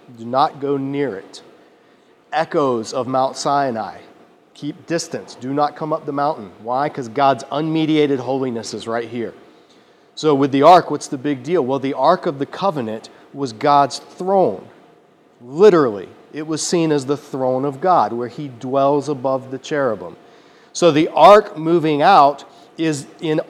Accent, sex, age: American, male, 40-59